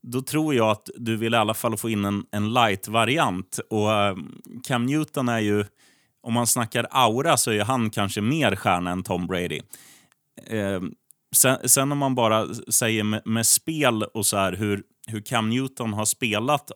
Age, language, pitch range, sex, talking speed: 30-49, Swedish, 95-120 Hz, male, 180 wpm